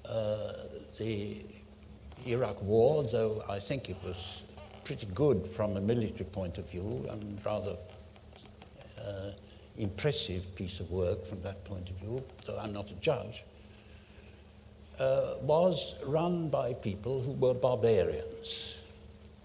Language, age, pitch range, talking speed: English, 60-79, 95-120 Hz, 130 wpm